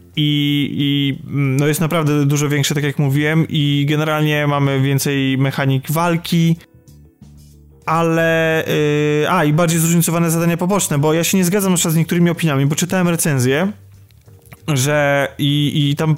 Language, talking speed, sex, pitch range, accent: Polish, 150 wpm, male, 145-165 Hz, native